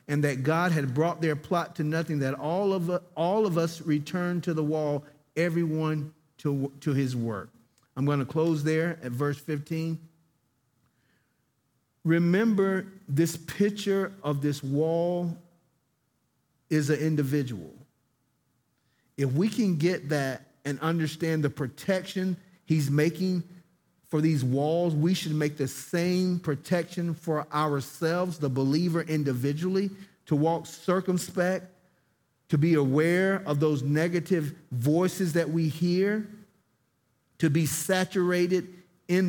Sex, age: male, 40-59